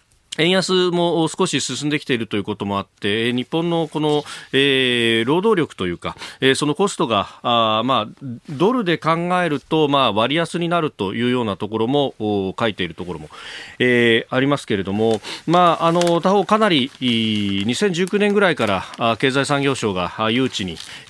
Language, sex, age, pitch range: Japanese, male, 40-59, 105-155 Hz